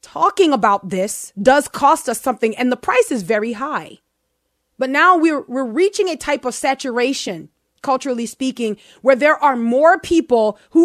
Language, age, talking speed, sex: English, 30-49, 165 wpm, female